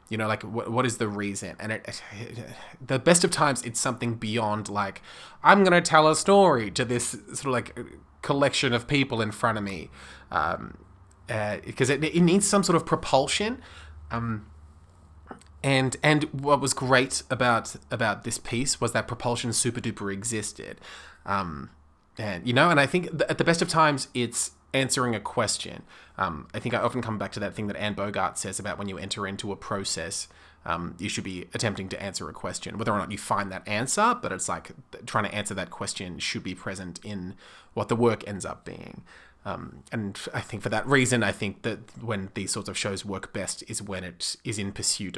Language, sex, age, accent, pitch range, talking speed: English, male, 20-39, Australian, 100-130 Hz, 210 wpm